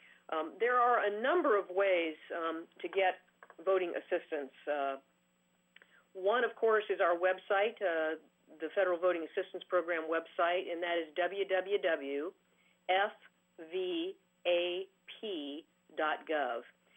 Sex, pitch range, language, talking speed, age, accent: female, 165-205 Hz, English, 105 wpm, 50-69, American